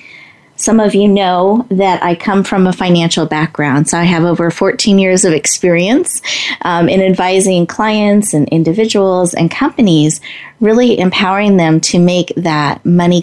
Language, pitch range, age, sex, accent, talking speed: English, 165-210 Hz, 30-49, female, American, 155 wpm